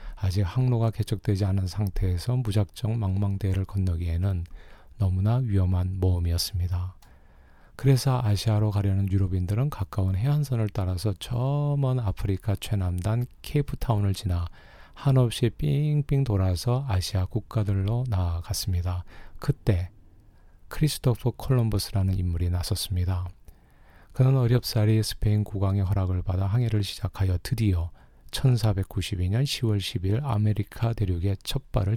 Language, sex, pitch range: Korean, male, 90-115 Hz